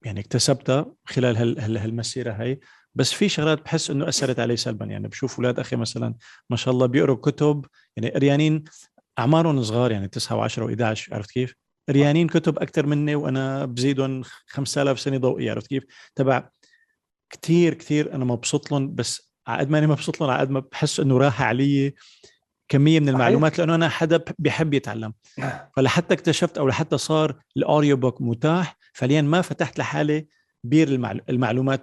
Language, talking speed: Arabic, 160 wpm